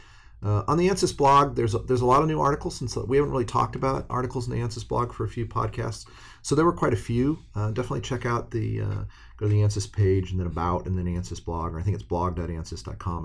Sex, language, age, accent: male, English, 40-59, American